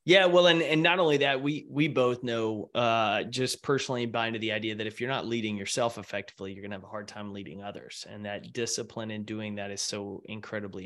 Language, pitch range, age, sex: English, 115-150 Hz, 20-39, male